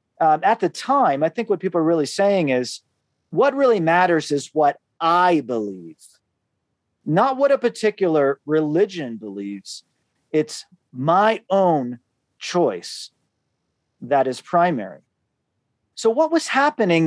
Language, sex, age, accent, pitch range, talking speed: English, male, 40-59, American, 155-220 Hz, 125 wpm